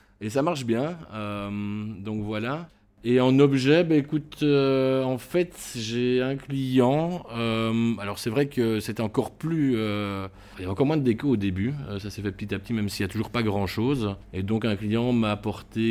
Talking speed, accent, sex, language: 215 wpm, French, male, French